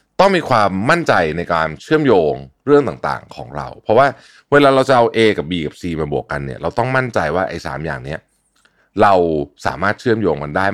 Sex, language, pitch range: male, Thai, 75-110 Hz